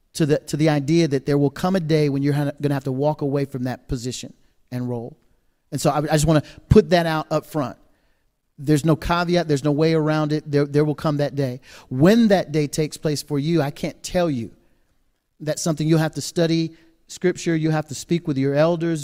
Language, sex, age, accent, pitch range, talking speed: English, male, 40-59, American, 140-170 Hz, 235 wpm